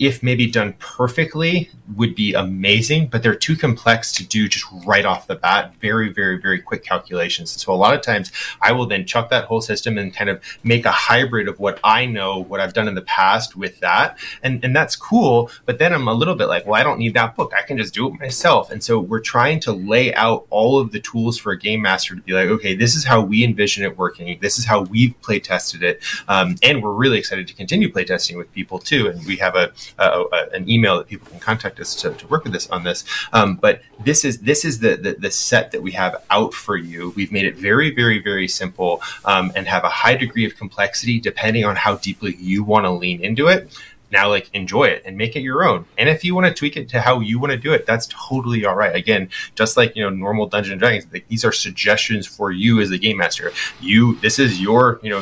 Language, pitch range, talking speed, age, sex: English, 100-125 Hz, 255 wpm, 30-49, male